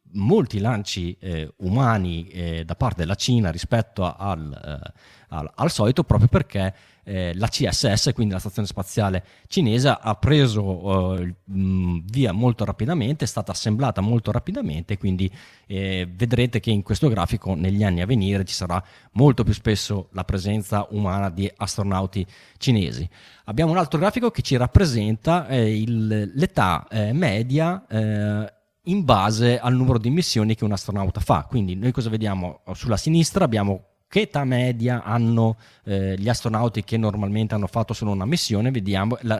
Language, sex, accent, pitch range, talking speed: Italian, male, native, 95-120 Hz, 155 wpm